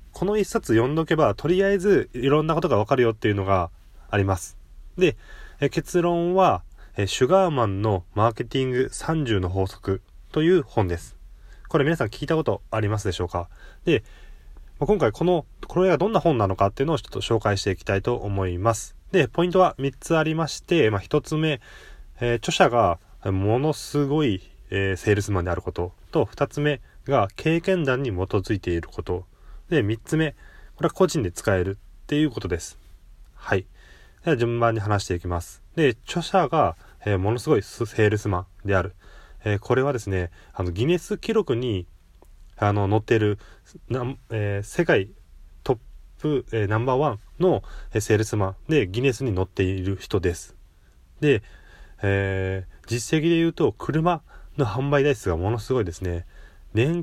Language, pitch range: Japanese, 95-150 Hz